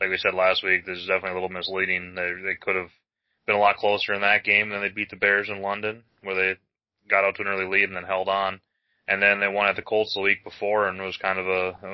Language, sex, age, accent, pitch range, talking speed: English, male, 20-39, American, 95-105 Hz, 290 wpm